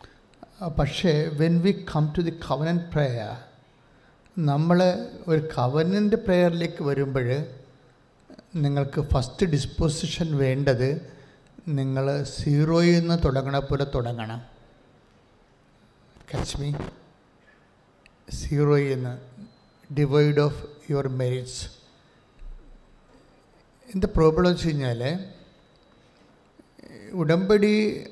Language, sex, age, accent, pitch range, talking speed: English, male, 60-79, Indian, 135-165 Hz, 75 wpm